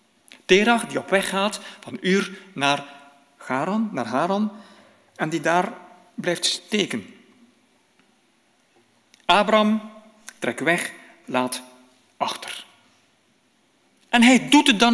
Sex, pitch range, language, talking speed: male, 145-210 Hz, Dutch, 100 wpm